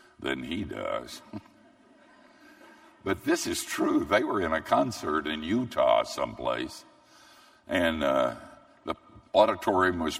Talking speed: 120 wpm